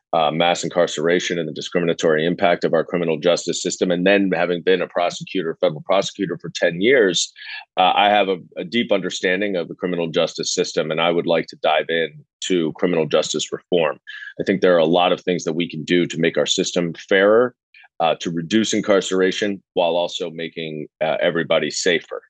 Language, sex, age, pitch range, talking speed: English, male, 30-49, 85-105 Hz, 195 wpm